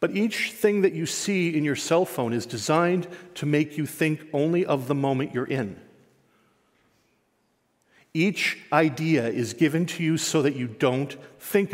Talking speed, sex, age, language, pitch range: 170 wpm, male, 40-59, English, 135-175 Hz